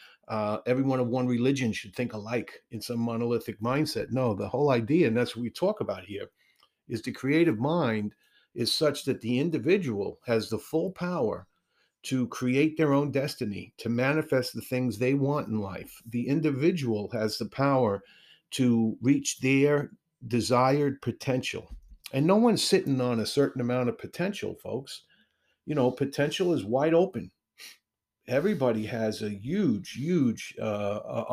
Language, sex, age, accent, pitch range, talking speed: English, male, 50-69, American, 110-140 Hz, 155 wpm